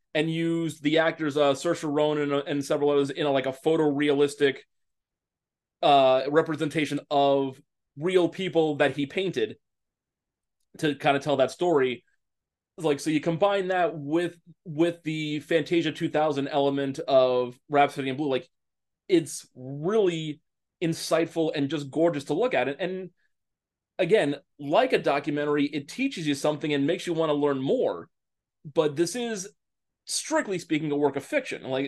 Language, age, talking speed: English, 30-49, 155 wpm